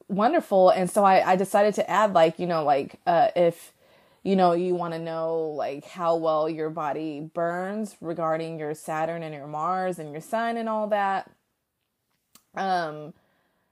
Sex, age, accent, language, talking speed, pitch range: female, 20-39, American, English, 170 wpm, 170-215 Hz